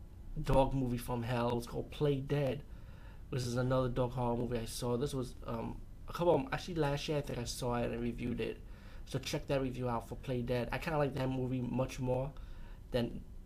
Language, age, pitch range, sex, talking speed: English, 20-39, 120-130 Hz, male, 225 wpm